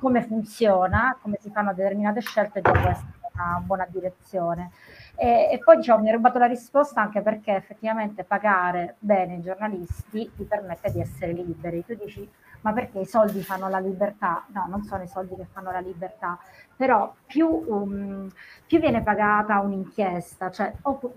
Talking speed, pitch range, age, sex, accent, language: 175 wpm, 195-230 Hz, 30-49, female, native, Italian